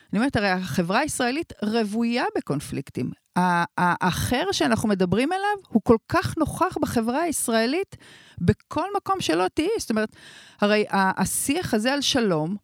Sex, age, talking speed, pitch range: female, 40-59, 135 wpm, 190-275 Hz